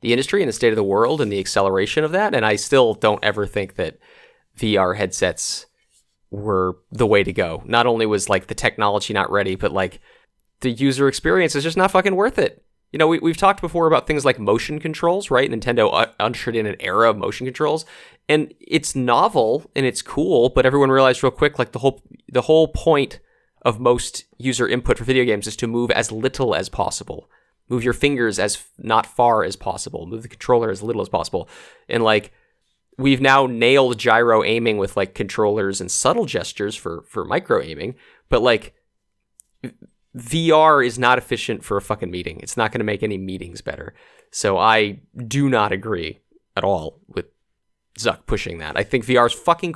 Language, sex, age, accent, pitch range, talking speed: English, male, 30-49, American, 110-140 Hz, 195 wpm